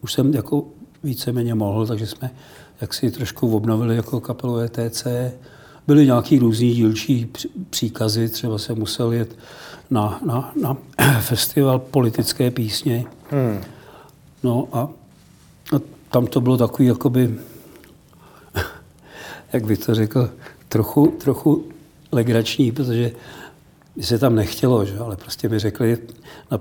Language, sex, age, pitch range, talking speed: Czech, male, 60-79, 110-130 Hz, 120 wpm